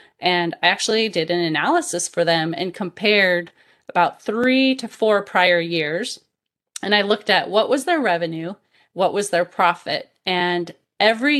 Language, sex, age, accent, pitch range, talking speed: English, female, 30-49, American, 170-210 Hz, 160 wpm